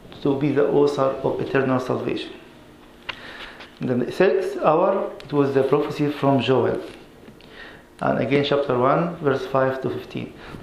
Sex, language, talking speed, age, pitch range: male, English, 140 wpm, 50-69, 135-160 Hz